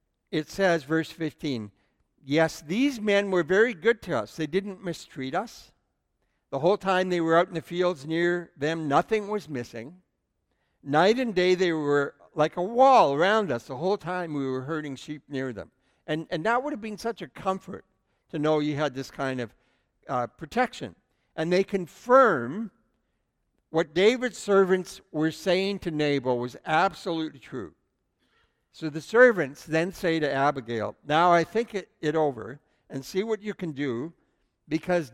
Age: 60-79